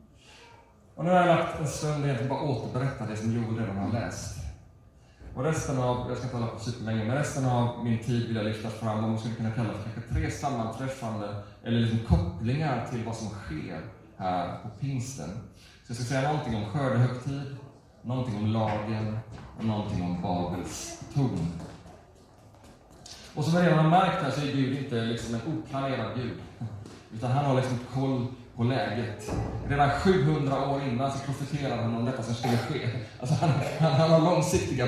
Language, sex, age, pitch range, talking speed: Swedish, male, 30-49, 110-150 Hz, 180 wpm